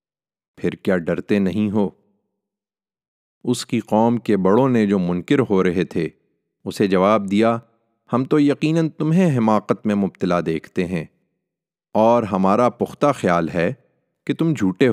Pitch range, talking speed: 100-140 Hz, 145 wpm